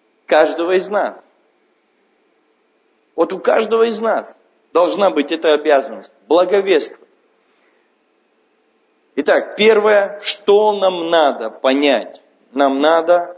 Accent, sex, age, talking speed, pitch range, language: native, male, 40-59, 95 wpm, 140-200 Hz, Russian